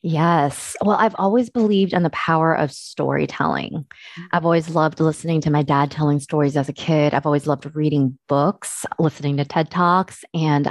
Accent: American